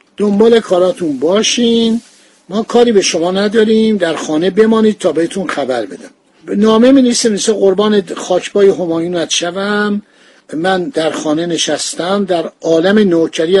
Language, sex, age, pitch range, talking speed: Persian, male, 50-69, 170-215 Hz, 130 wpm